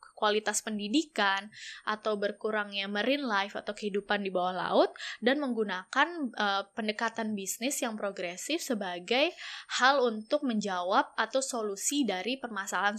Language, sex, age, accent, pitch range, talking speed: English, female, 10-29, Indonesian, 200-250 Hz, 120 wpm